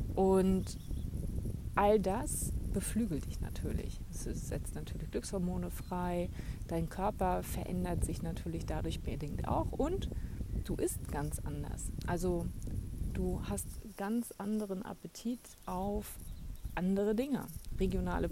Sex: female